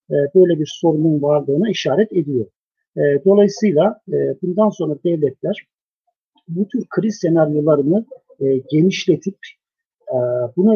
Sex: male